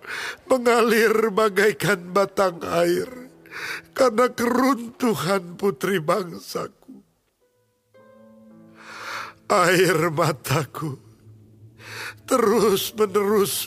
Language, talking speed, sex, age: Indonesian, 50 wpm, male, 50-69